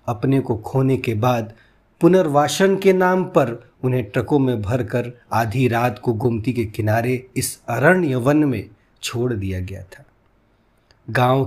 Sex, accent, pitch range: male, native, 120-155 Hz